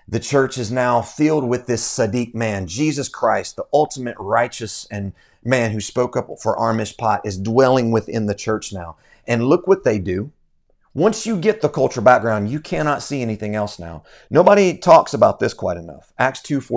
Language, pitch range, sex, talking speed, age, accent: English, 110-150 Hz, male, 185 wpm, 40-59, American